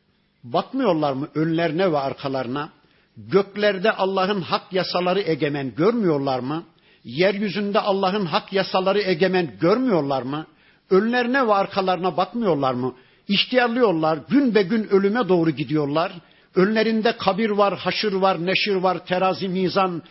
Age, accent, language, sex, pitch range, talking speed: 50-69, native, Turkish, male, 160-195 Hz, 120 wpm